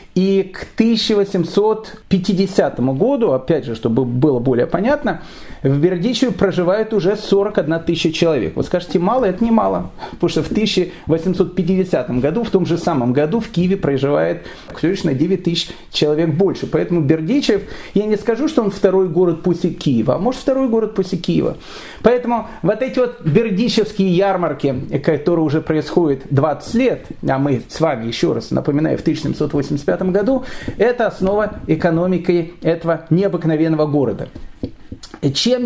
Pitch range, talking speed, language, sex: 155-200 Hz, 145 wpm, Russian, male